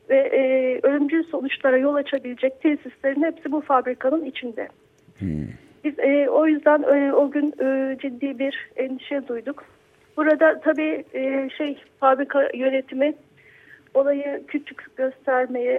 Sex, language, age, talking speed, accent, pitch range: female, Turkish, 40-59, 120 wpm, native, 255-285 Hz